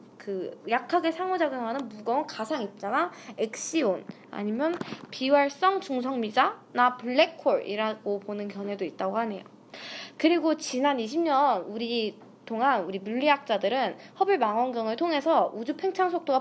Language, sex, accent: Korean, female, native